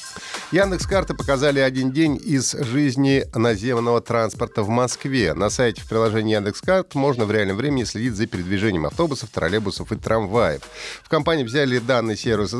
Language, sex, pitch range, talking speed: Russian, male, 105-140 Hz, 150 wpm